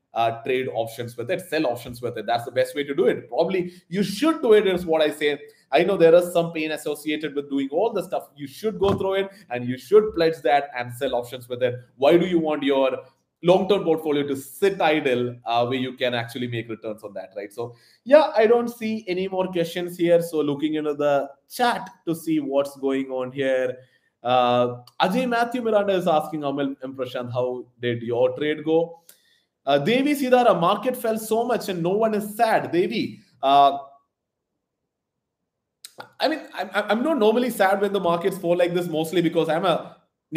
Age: 30-49